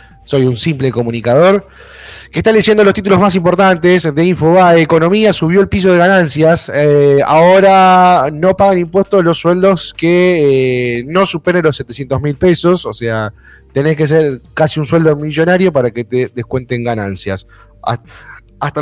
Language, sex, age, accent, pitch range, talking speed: Spanish, male, 20-39, Argentinian, 115-165 Hz, 155 wpm